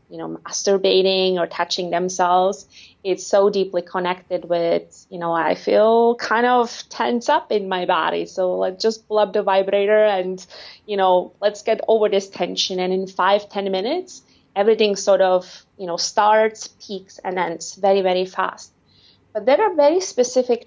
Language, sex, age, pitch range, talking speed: English, female, 20-39, 180-210 Hz, 170 wpm